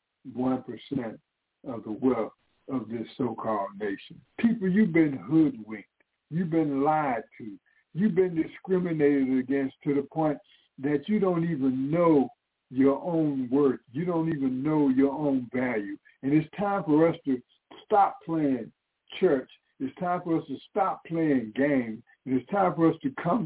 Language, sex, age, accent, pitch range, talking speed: English, male, 60-79, American, 135-180 Hz, 155 wpm